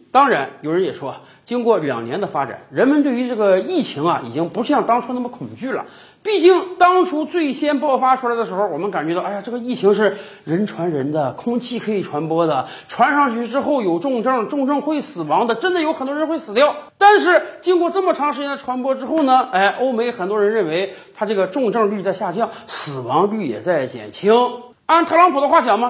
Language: Chinese